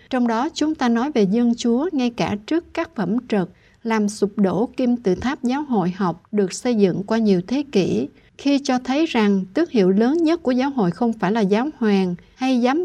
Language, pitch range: Vietnamese, 200-260 Hz